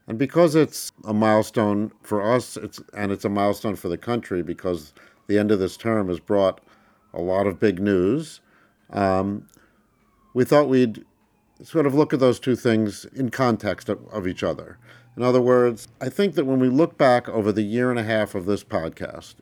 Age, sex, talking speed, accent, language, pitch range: 50-69, male, 200 wpm, American, English, 105-125 Hz